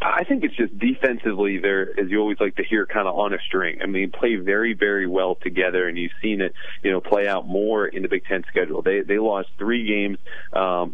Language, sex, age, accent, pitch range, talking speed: English, male, 40-59, American, 95-115 Hz, 245 wpm